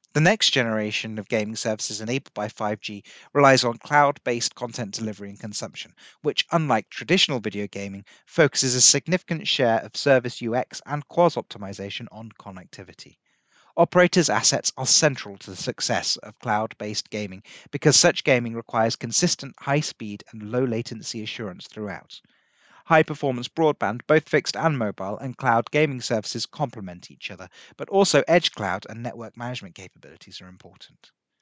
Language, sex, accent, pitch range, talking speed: English, male, British, 110-145 Hz, 145 wpm